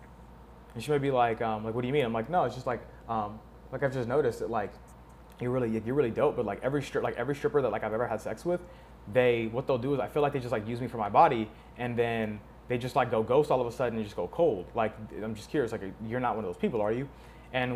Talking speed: 295 wpm